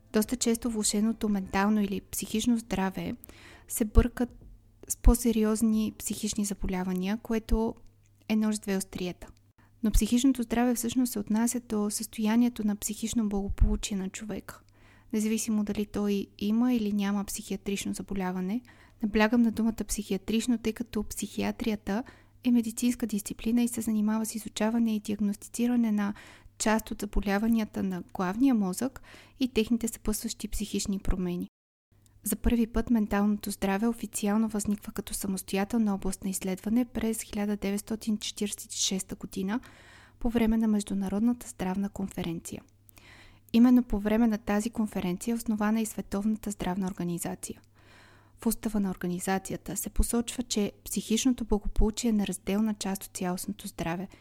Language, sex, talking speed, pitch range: Bulgarian, female, 130 wpm, 195-225 Hz